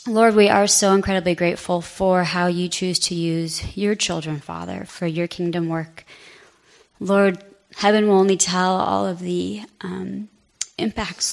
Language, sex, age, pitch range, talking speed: English, female, 20-39, 180-215 Hz, 155 wpm